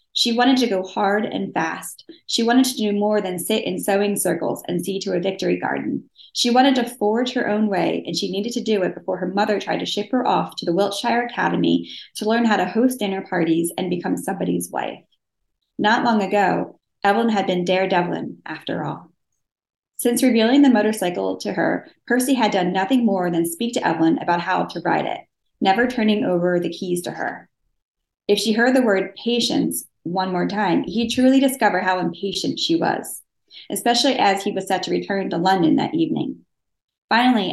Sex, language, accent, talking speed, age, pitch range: female, English, American, 200 wpm, 20-39, 185-235 Hz